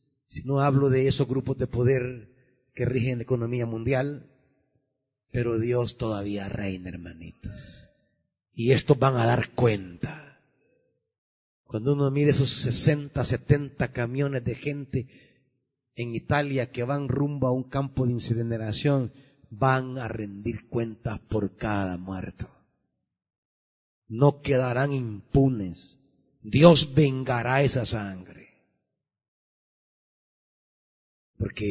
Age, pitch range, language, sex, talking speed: 40-59, 120-165 Hz, Spanish, male, 110 wpm